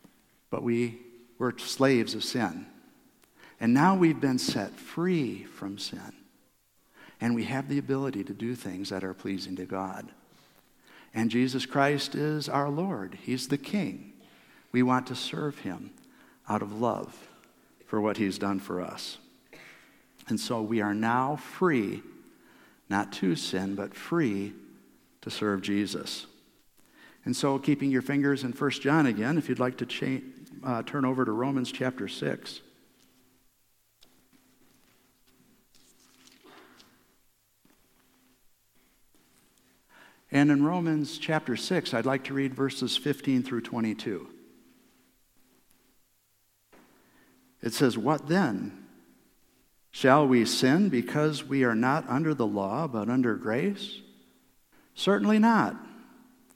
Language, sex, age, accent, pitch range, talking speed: English, male, 60-79, American, 115-145 Hz, 125 wpm